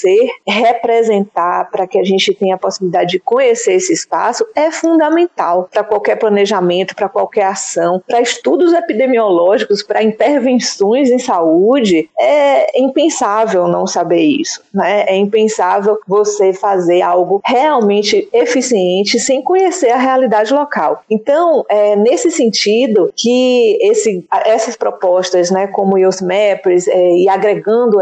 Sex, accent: female, Brazilian